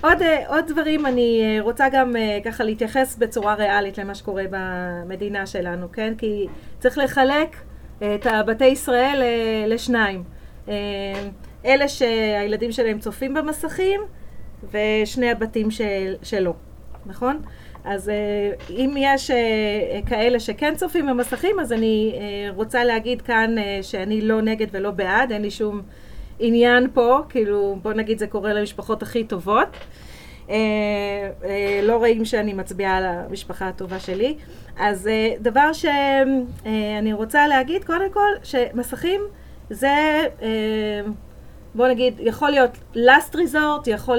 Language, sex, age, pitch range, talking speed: Hebrew, female, 30-49, 205-260 Hz, 115 wpm